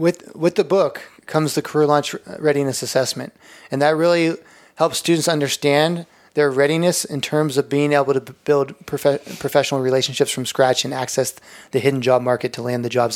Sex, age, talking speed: male, 20-39, 180 wpm